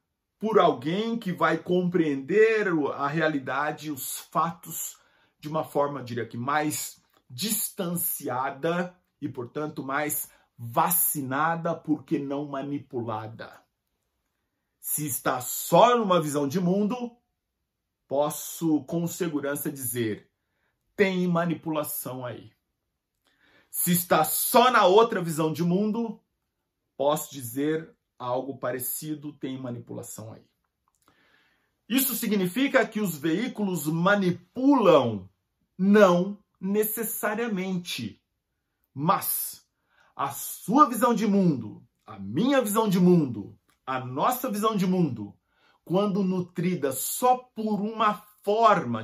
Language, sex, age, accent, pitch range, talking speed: English, male, 50-69, Brazilian, 145-205 Hz, 100 wpm